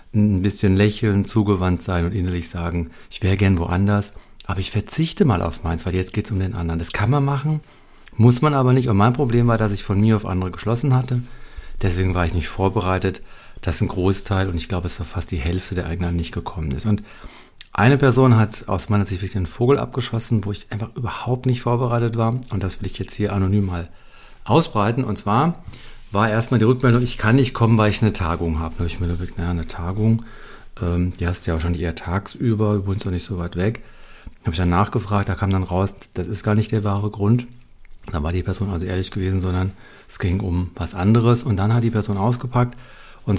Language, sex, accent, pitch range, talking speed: German, male, German, 90-115 Hz, 230 wpm